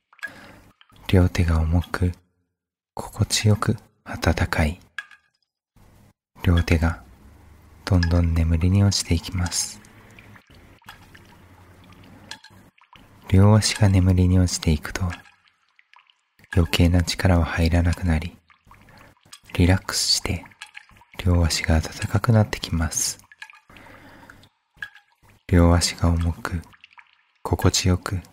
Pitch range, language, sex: 85-100 Hz, Japanese, male